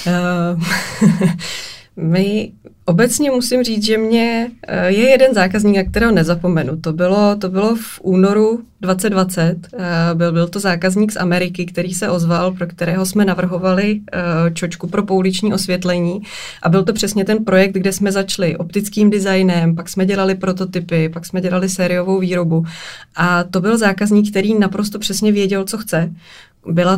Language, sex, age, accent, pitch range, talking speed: Czech, female, 20-39, native, 180-205 Hz, 145 wpm